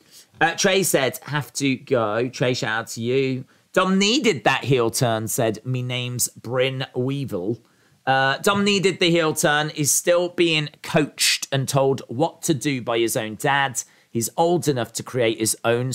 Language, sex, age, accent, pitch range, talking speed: English, male, 40-59, British, 120-160 Hz, 175 wpm